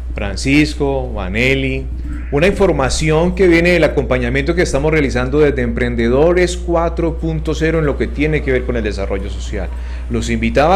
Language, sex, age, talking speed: Spanish, male, 30-49, 145 wpm